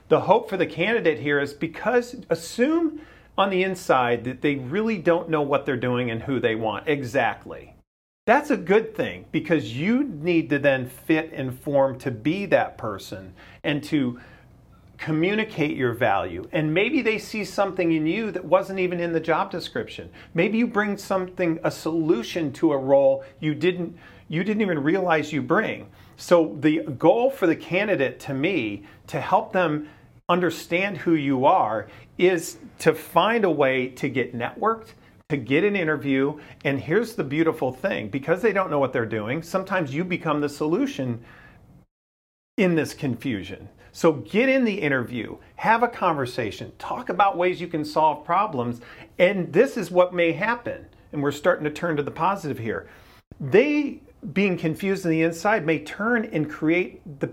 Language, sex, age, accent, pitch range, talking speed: English, male, 40-59, American, 140-185 Hz, 180 wpm